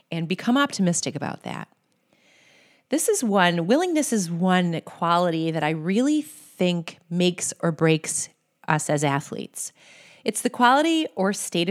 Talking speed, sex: 140 wpm, female